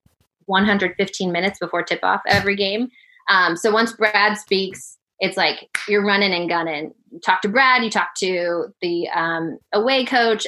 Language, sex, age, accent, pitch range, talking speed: English, female, 20-39, American, 170-205 Hz, 165 wpm